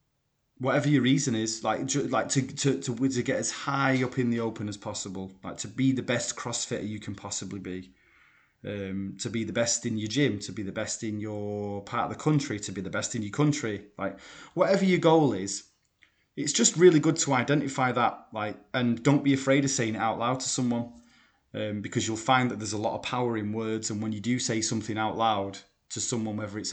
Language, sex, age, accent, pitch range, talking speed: English, male, 30-49, British, 100-125 Hz, 230 wpm